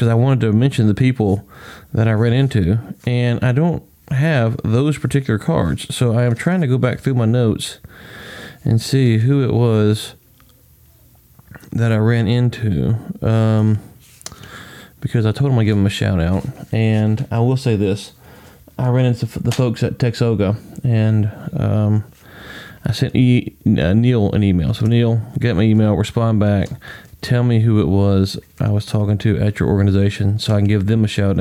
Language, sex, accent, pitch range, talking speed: English, male, American, 105-125 Hz, 180 wpm